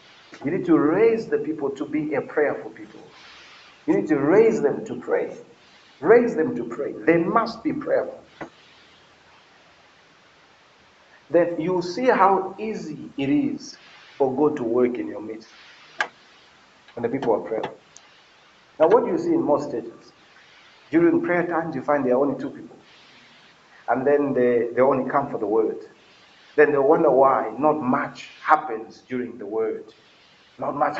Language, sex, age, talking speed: English, male, 50-69, 160 wpm